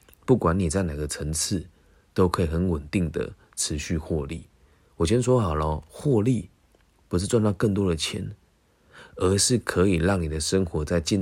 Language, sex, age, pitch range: Chinese, male, 30-49, 80-100 Hz